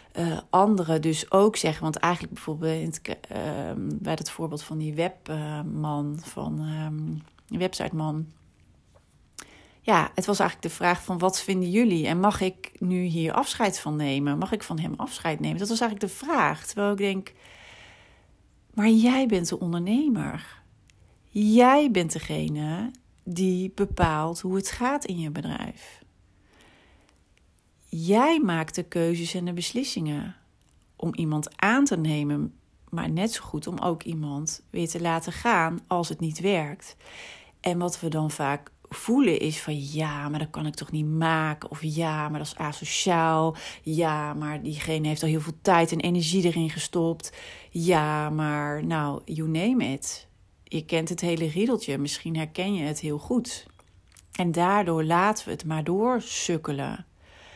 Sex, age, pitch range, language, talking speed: female, 40-59, 150-185 Hz, Dutch, 160 wpm